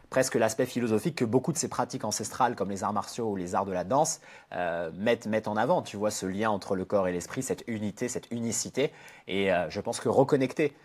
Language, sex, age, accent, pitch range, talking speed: French, male, 30-49, French, 100-125 Hz, 240 wpm